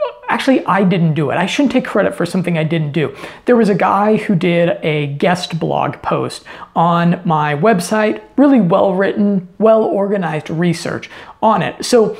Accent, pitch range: American, 175-220 Hz